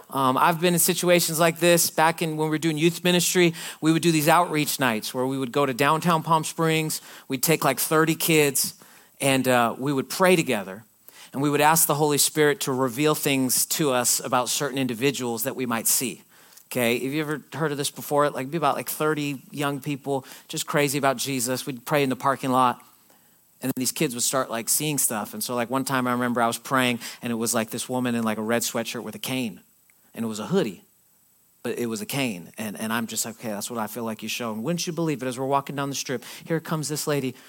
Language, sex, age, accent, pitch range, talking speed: English, male, 40-59, American, 125-160 Hz, 245 wpm